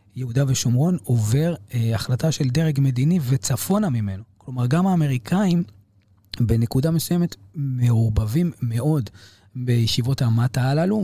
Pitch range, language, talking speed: 110-140 Hz, Hebrew, 110 wpm